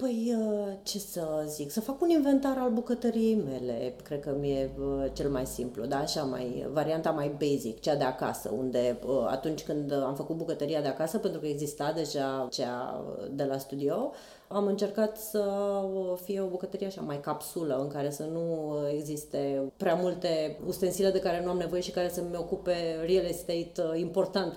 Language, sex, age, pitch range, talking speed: Romanian, female, 30-49, 145-190 Hz, 175 wpm